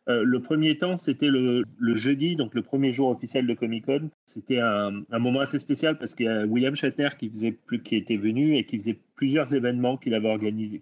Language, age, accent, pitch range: French, 30-49, French, 110-135 Hz